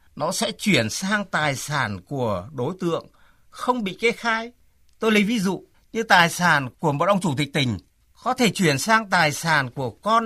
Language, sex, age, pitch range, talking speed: Vietnamese, male, 60-79, 145-215 Hz, 200 wpm